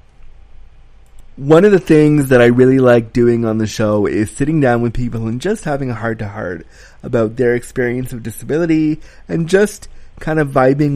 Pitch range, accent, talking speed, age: 120-155 Hz, American, 185 wpm, 30-49